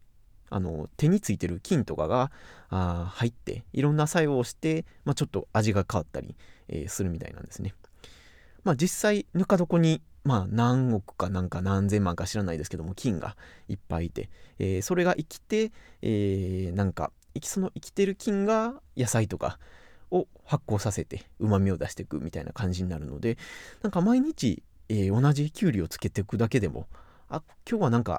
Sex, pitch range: male, 90-145 Hz